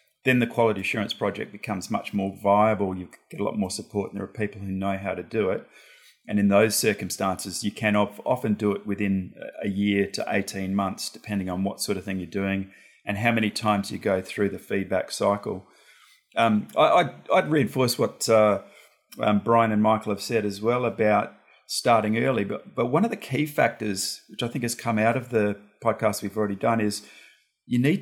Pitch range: 100-120 Hz